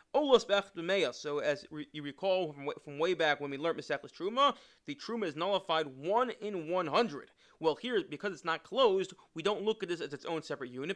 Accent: American